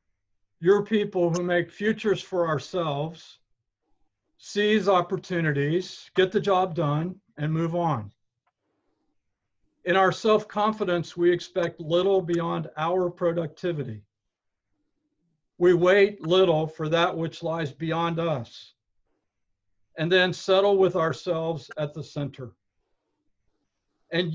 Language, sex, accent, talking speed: English, male, American, 110 wpm